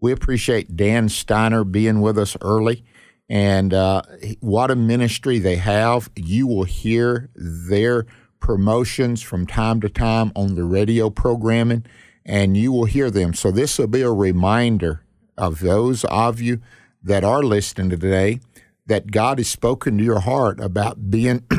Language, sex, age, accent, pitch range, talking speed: English, male, 50-69, American, 100-125 Hz, 155 wpm